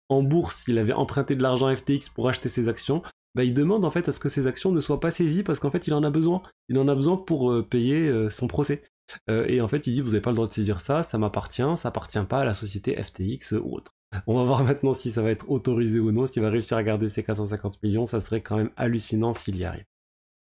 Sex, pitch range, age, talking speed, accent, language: male, 110-140 Hz, 20-39, 275 wpm, French, French